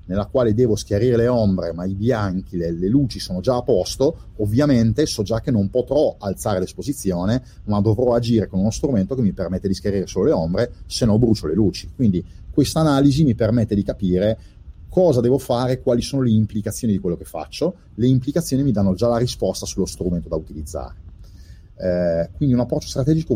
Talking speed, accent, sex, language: 200 wpm, native, male, Italian